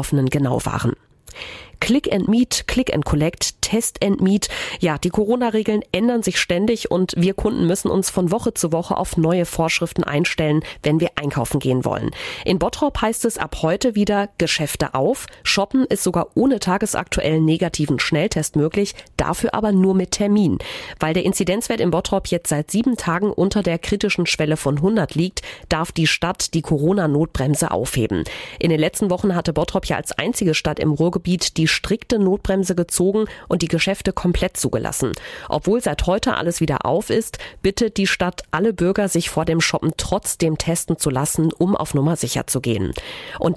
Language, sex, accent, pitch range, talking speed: German, female, German, 160-205 Hz, 175 wpm